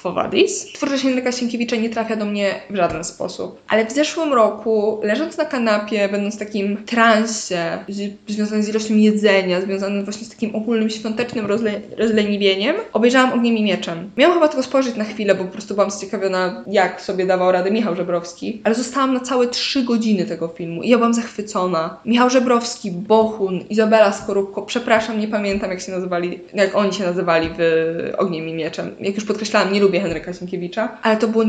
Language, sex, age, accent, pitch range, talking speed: Polish, female, 20-39, native, 190-230 Hz, 180 wpm